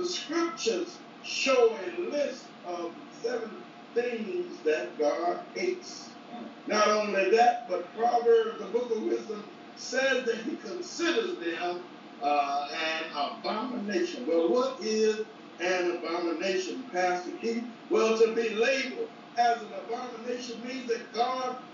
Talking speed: 125 wpm